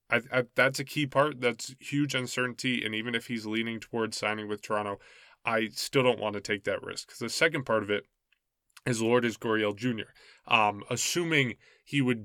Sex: male